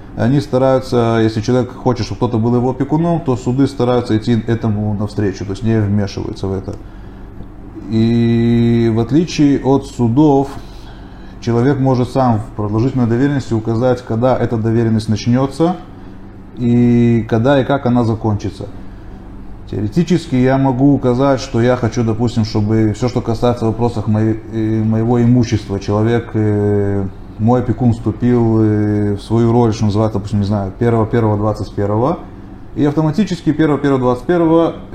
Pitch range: 105-130 Hz